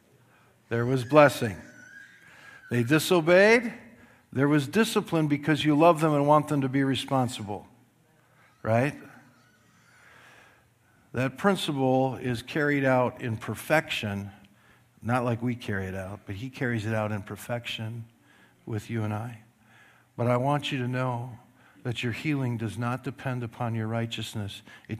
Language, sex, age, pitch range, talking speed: English, male, 50-69, 110-130 Hz, 140 wpm